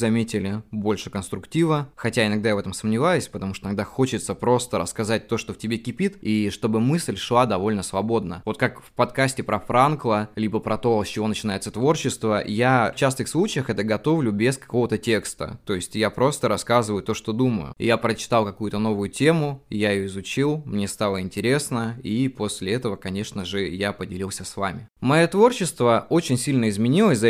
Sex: male